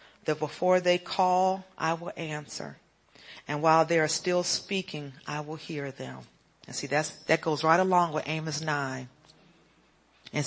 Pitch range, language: 150-175 Hz, English